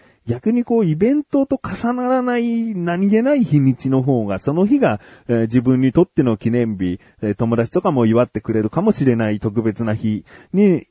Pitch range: 95-125 Hz